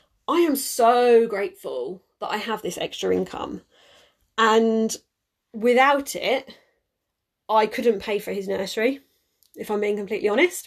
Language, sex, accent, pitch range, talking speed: English, female, British, 210-260 Hz, 135 wpm